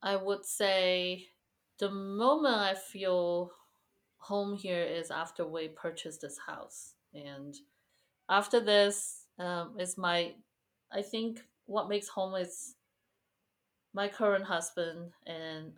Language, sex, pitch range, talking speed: English, female, 160-200 Hz, 120 wpm